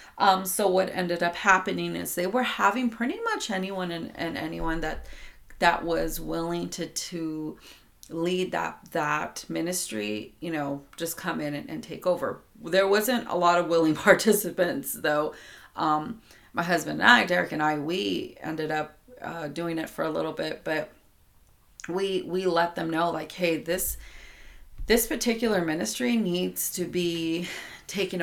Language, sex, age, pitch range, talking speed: English, female, 30-49, 160-190 Hz, 165 wpm